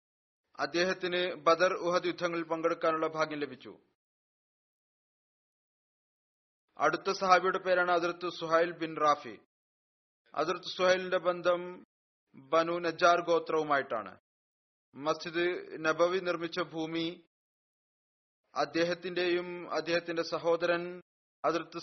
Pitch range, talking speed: 155-175 Hz, 70 wpm